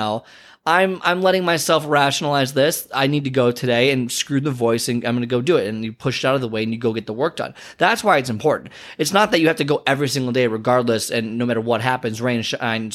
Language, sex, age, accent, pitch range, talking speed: English, male, 20-39, American, 125-155 Hz, 275 wpm